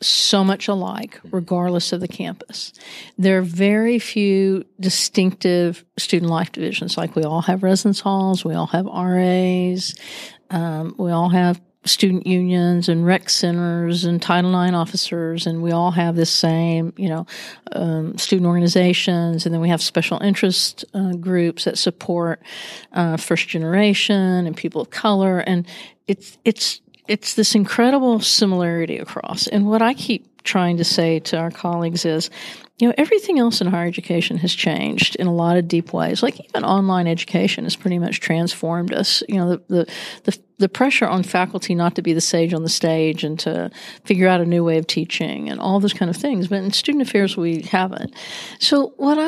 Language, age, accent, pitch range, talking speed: English, 50-69, American, 170-205 Hz, 180 wpm